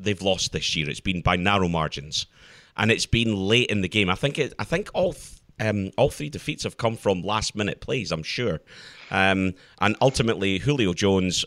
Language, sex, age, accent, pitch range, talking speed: English, male, 30-49, British, 85-115 Hz, 205 wpm